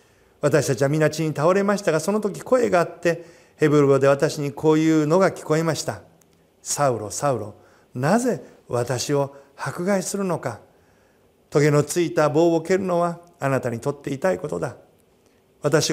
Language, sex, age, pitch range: Japanese, male, 50-69, 130-185 Hz